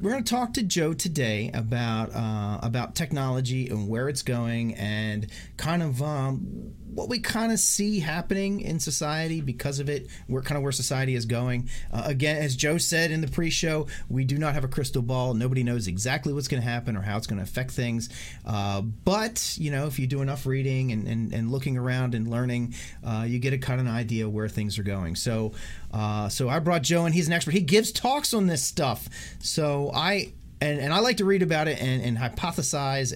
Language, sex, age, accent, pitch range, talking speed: English, male, 40-59, American, 115-155 Hz, 225 wpm